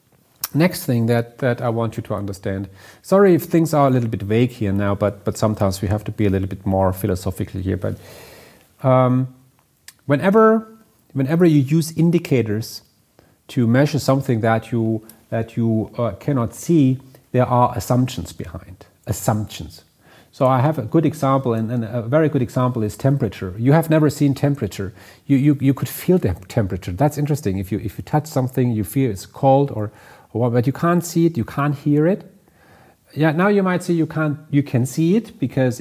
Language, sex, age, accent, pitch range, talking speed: English, male, 40-59, German, 110-150 Hz, 190 wpm